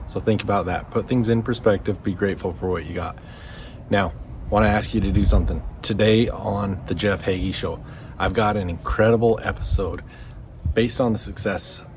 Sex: male